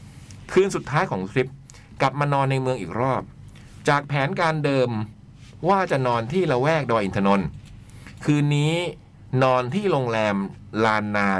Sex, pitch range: male, 110-150 Hz